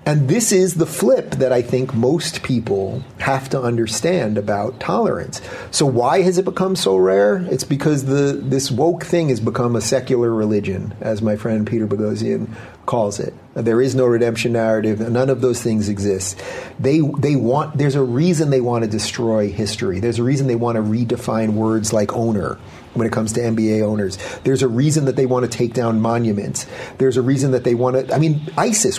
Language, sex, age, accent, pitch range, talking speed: English, male, 40-59, American, 120-165 Hz, 205 wpm